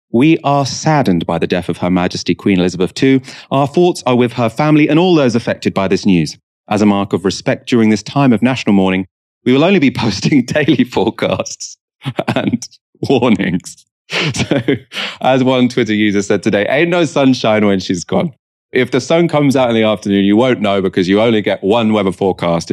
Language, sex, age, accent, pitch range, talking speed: English, male, 30-49, British, 100-130 Hz, 200 wpm